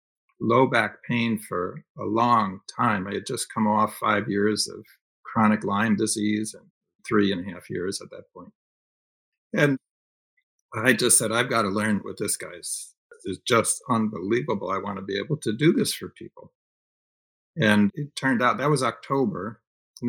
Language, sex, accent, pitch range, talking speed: English, male, American, 105-135 Hz, 180 wpm